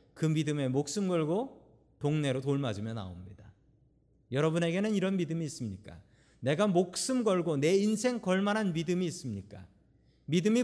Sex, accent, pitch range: male, native, 120-180 Hz